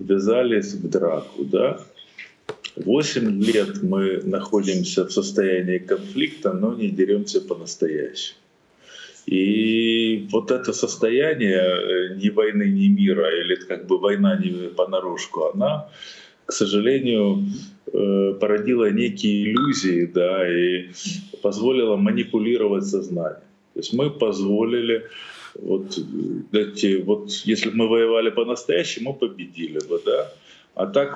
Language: Russian